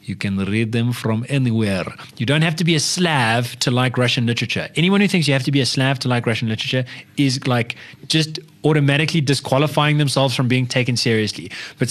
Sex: male